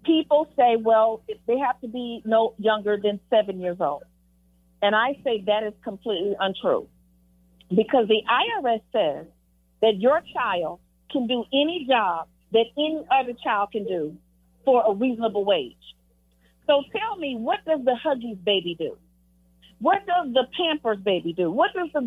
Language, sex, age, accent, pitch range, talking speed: English, female, 40-59, American, 180-280 Hz, 160 wpm